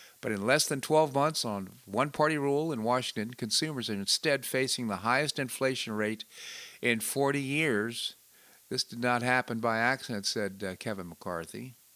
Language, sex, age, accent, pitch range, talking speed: English, male, 50-69, American, 105-135 Hz, 160 wpm